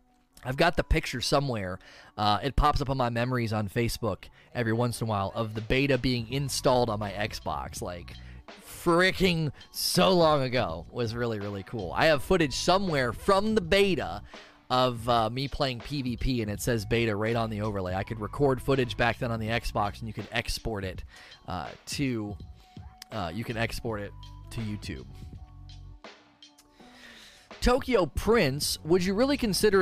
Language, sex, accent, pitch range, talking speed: English, male, American, 110-145 Hz, 170 wpm